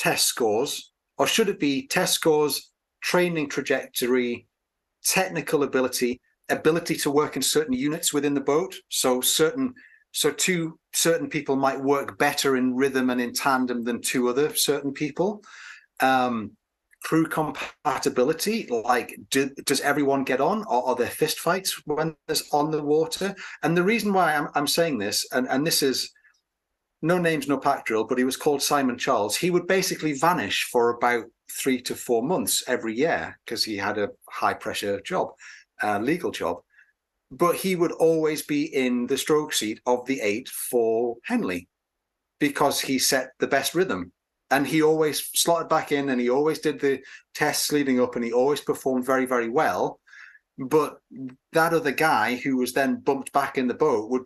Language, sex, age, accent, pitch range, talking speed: English, male, 40-59, British, 125-160 Hz, 175 wpm